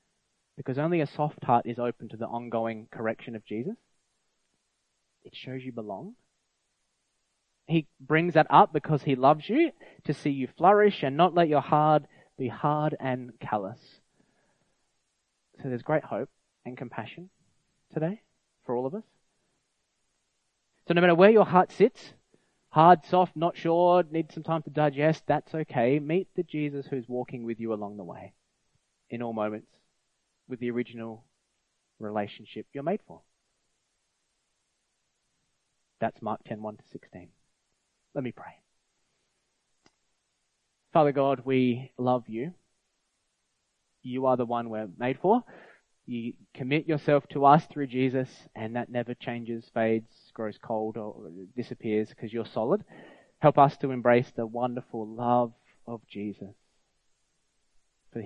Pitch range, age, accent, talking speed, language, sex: 115-150 Hz, 20-39, Australian, 140 wpm, English, male